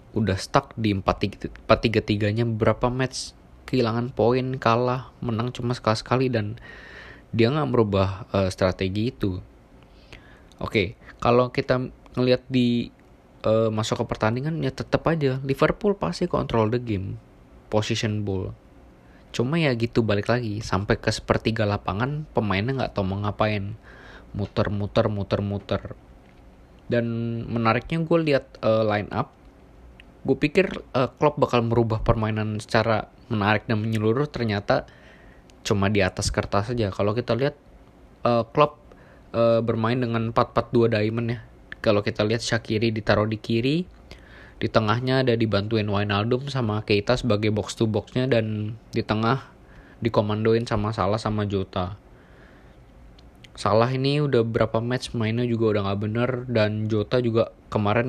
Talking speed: 135 wpm